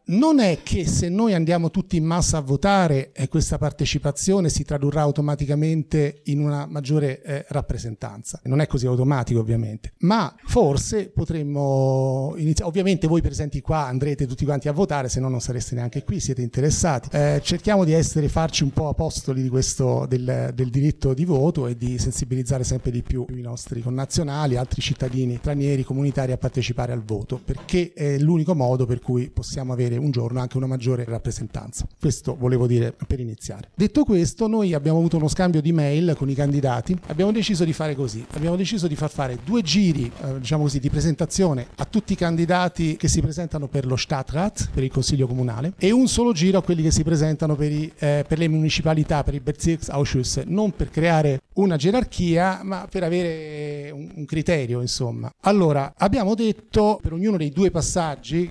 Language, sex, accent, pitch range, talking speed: Italian, male, native, 130-170 Hz, 185 wpm